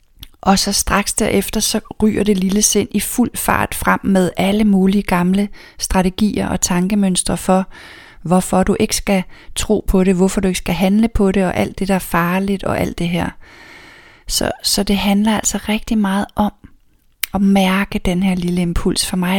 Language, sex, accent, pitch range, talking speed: Danish, female, native, 175-205 Hz, 190 wpm